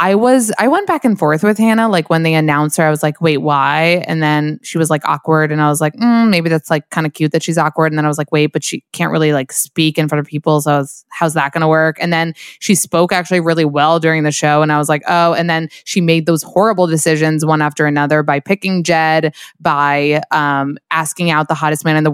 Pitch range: 155-190 Hz